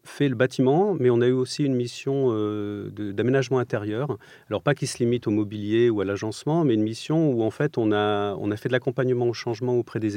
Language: French